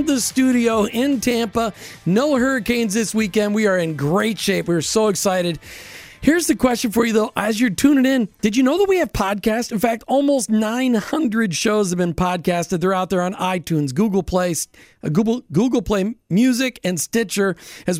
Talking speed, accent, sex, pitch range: 185 wpm, American, male, 185-230 Hz